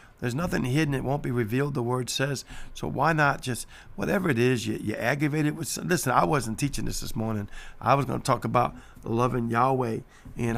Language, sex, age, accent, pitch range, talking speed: English, male, 50-69, American, 120-140 Hz, 215 wpm